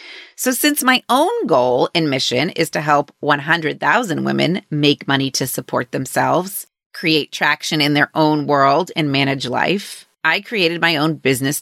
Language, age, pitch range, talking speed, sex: English, 30-49, 150-200 Hz, 160 wpm, female